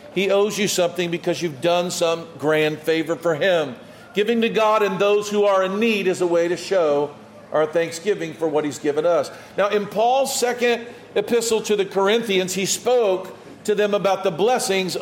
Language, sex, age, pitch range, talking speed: English, male, 50-69, 165-220 Hz, 190 wpm